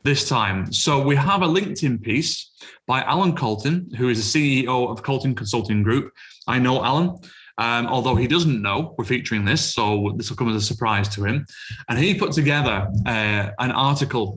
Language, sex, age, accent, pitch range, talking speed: English, male, 30-49, British, 120-160 Hz, 190 wpm